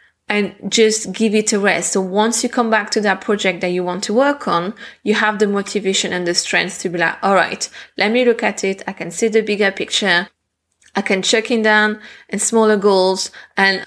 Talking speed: 225 wpm